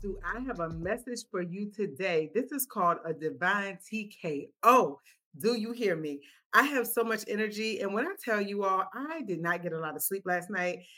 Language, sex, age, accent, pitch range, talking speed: English, female, 30-49, American, 175-235 Hz, 215 wpm